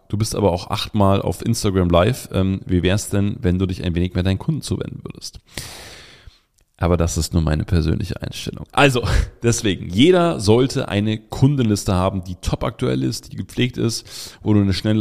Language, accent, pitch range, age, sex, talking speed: German, German, 95-115 Hz, 30-49, male, 190 wpm